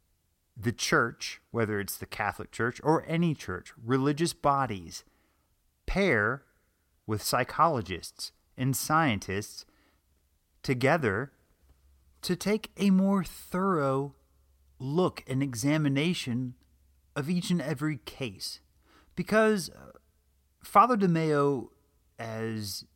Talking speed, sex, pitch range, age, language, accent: 90 wpm, male, 100-150 Hz, 30-49, English, American